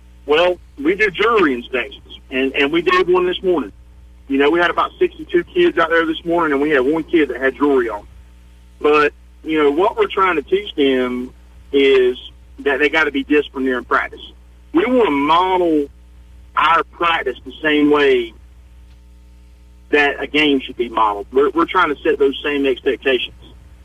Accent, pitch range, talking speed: American, 135-200 Hz, 185 wpm